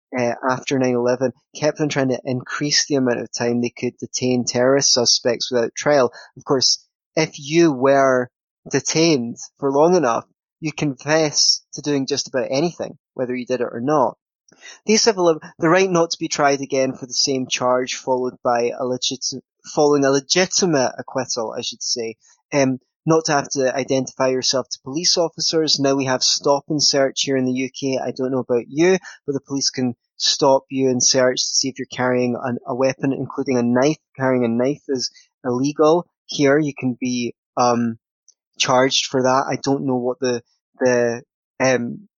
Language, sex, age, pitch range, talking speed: English, male, 20-39, 125-145 Hz, 185 wpm